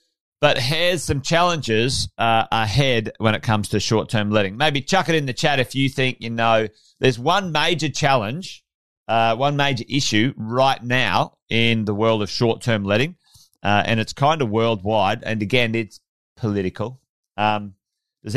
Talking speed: 165 wpm